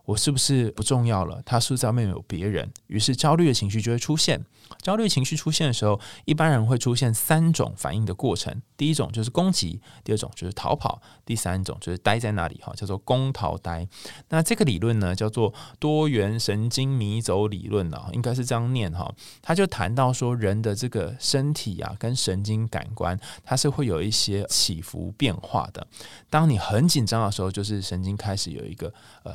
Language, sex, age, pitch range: Chinese, male, 20-39, 100-130 Hz